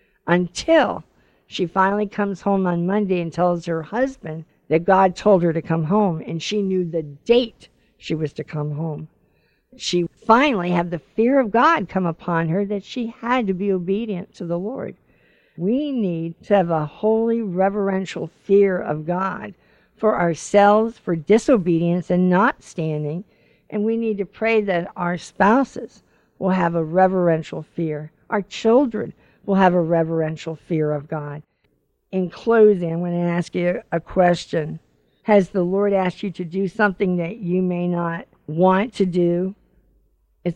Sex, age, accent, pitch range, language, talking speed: female, 50-69, American, 165-200 Hz, English, 165 wpm